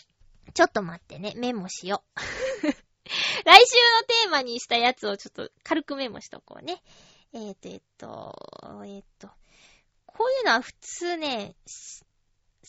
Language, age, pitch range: Japanese, 20-39, 230-390 Hz